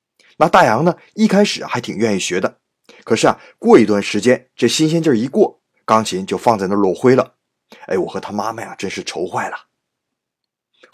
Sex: male